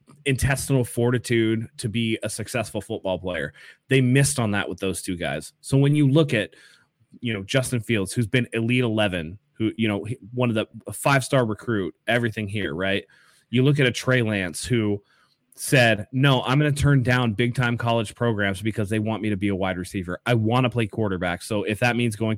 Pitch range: 100-130 Hz